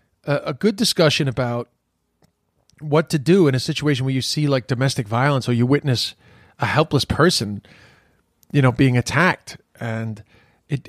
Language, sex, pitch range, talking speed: English, male, 120-150 Hz, 155 wpm